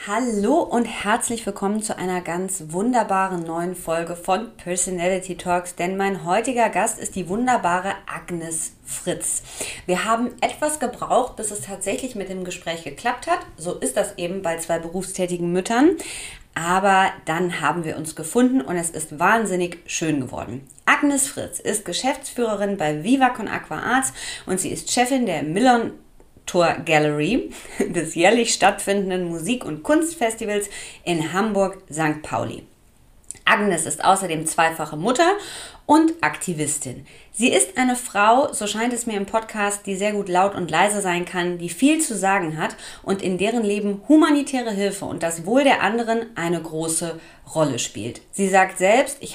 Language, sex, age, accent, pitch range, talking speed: German, female, 30-49, German, 170-230 Hz, 155 wpm